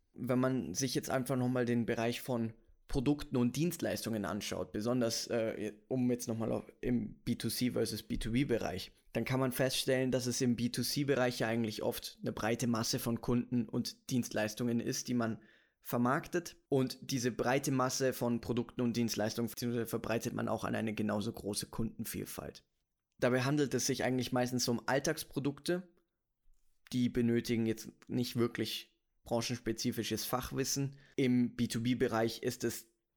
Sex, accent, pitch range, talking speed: male, German, 110-125 Hz, 145 wpm